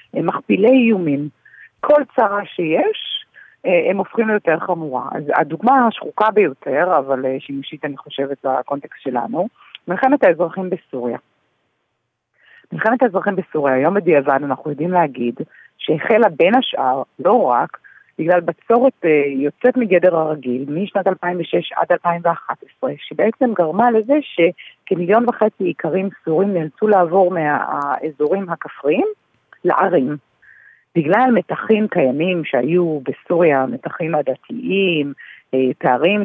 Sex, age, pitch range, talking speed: female, 40-59, 150-205 Hz, 105 wpm